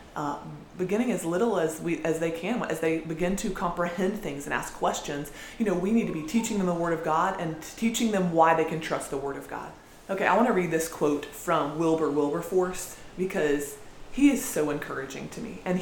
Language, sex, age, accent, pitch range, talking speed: English, female, 20-39, American, 155-205 Hz, 225 wpm